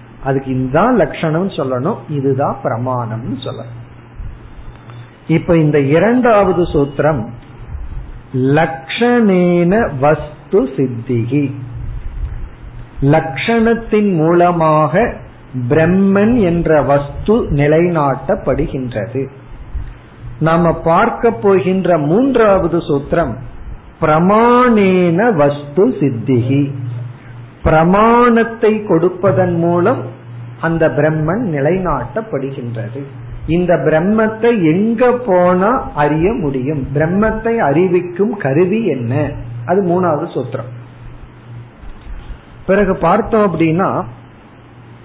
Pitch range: 130-190 Hz